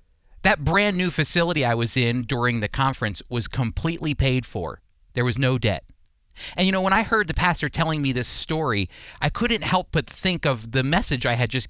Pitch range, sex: 120-175 Hz, male